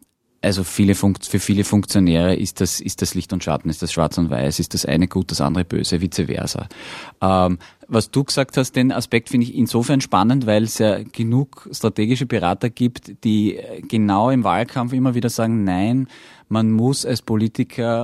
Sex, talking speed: male, 190 wpm